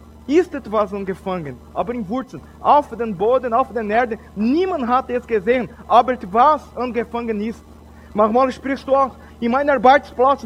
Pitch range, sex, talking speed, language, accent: 215-265 Hz, male, 155 wpm, German, Brazilian